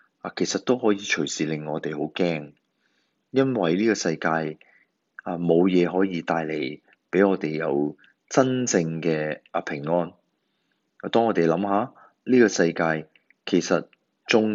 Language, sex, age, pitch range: Chinese, male, 30-49, 80-105 Hz